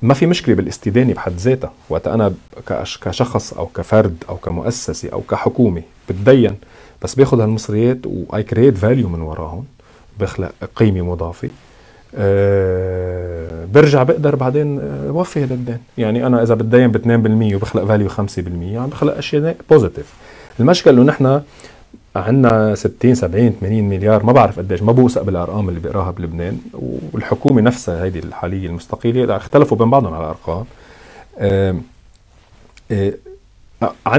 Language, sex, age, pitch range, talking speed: Arabic, male, 40-59, 95-120 Hz, 130 wpm